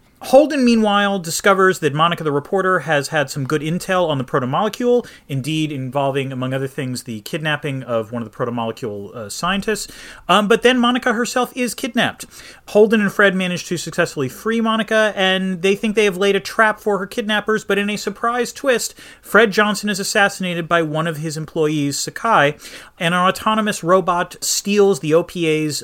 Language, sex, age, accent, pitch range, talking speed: English, male, 30-49, American, 150-215 Hz, 180 wpm